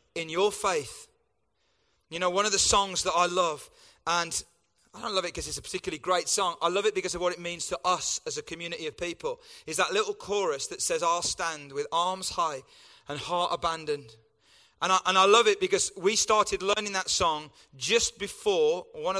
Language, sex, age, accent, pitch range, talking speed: English, male, 30-49, British, 170-210 Hz, 205 wpm